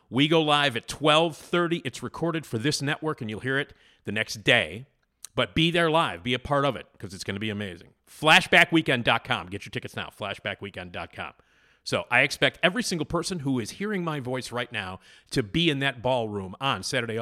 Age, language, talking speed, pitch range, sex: 40-59, English, 200 wpm, 105-140 Hz, male